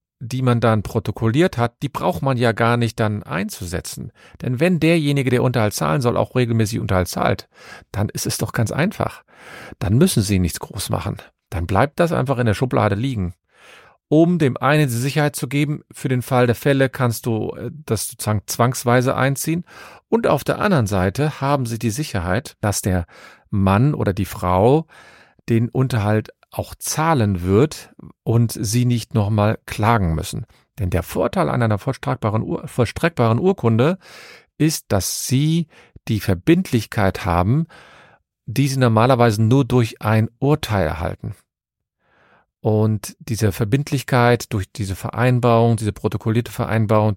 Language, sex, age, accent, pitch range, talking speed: German, male, 40-59, German, 105-140 Hz, 150 wpm